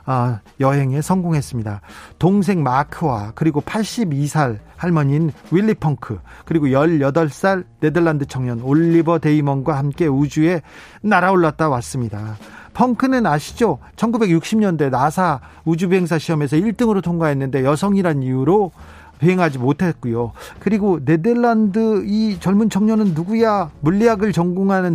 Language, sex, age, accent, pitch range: Korean, male, 40-59, native, 140-190 Hz